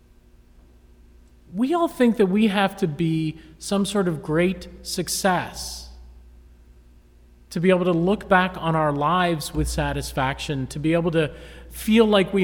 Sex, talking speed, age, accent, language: male, 150 wpm, 40-59, American, English